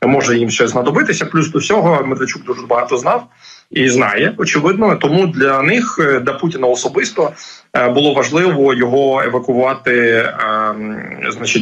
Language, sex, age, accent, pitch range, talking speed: Ukrainian, male, 30-49, native, 120-160 Hz, 125 wpm